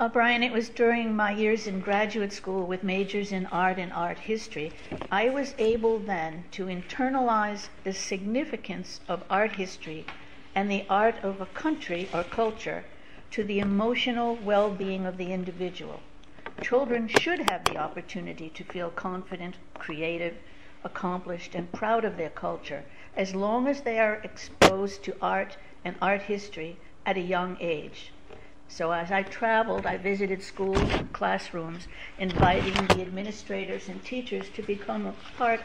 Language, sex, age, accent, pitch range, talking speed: English, female, 60-79, American, 185-220 Hz, 155 wpm